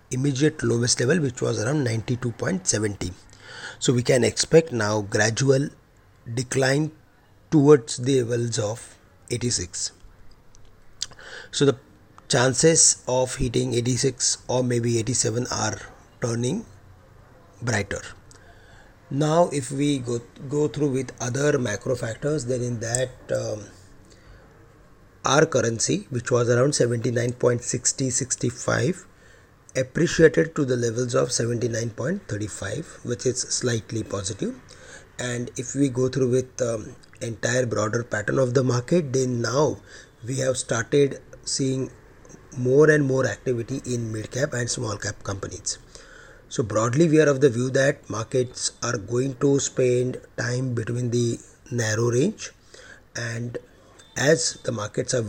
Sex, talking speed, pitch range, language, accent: male, 125 wpm, 110-135 Hz, English, Indian